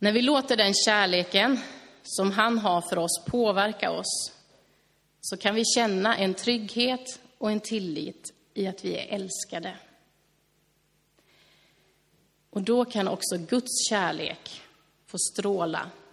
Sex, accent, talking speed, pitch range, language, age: female, native, 125 wpm, 180-220 Hz, Swedish, 30-49